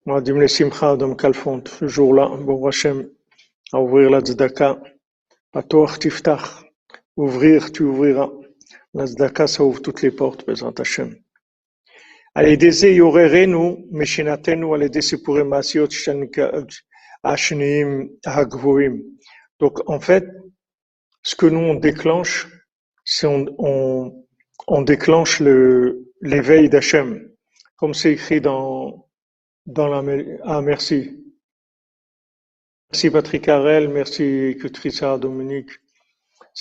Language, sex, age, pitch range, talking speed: French, male, 50-69, 140-165 Hz, 45 wpm